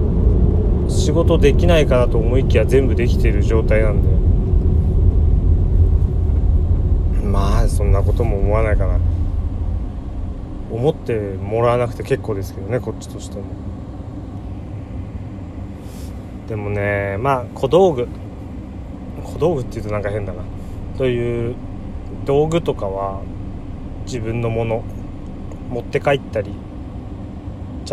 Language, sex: Japanese, male